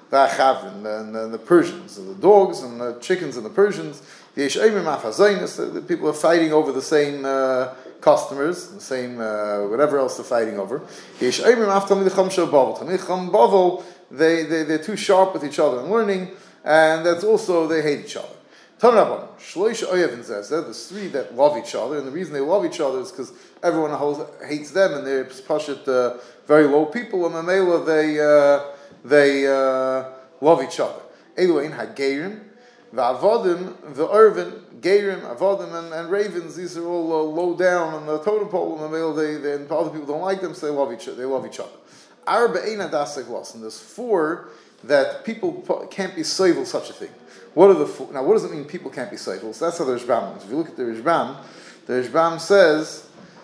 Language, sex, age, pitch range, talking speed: English, male, 30-49, 145-195 Hz, 175 wpm